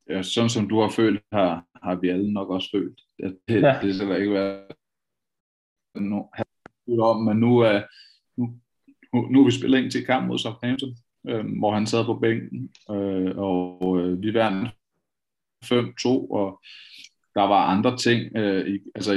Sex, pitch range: male, 100-115 Hz